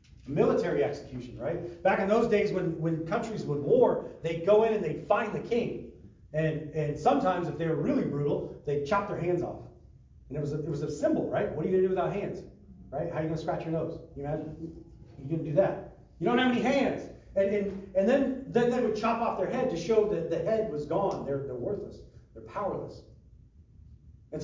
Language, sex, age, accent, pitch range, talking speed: English, male, 40-59, American, 140-195 Hz, 230 wpm